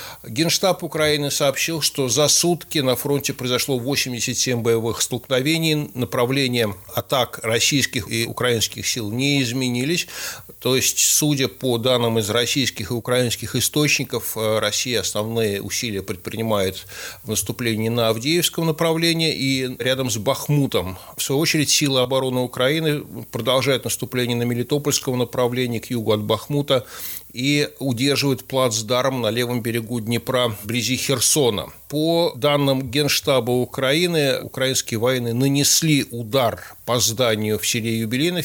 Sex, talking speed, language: male, 125 wpm, Russian